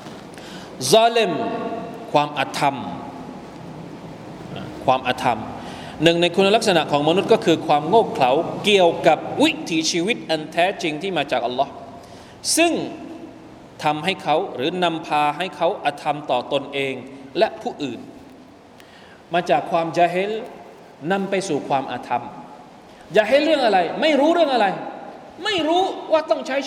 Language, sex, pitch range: Thai, male, 165-230 Hz